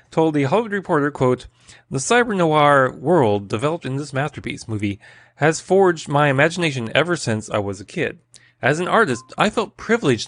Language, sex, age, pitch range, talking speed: English, male, 30-49, 120-160 Hz, 170 wpm